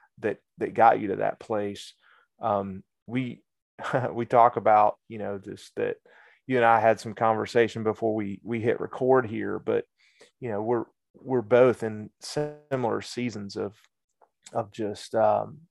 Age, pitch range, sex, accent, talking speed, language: 30-49, 105-120 Hz, male, American, 155 wpm, English